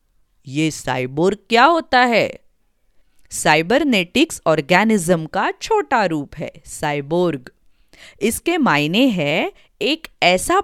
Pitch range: 160-265 Hz